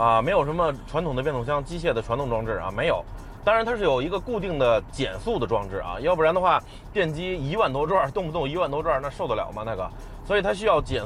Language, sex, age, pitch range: Chinese, male, 20-39, 110-175 Hz